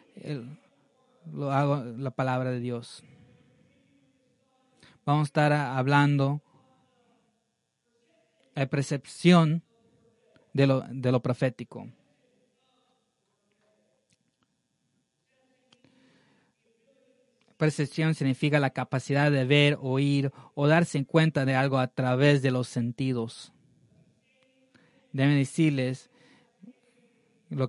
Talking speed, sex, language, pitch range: 85 wpm, male, English, 130-160 Hz